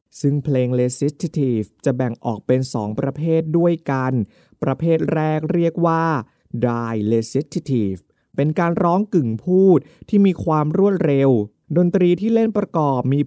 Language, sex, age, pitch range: Thai, male, 20-39, 125-165 Hz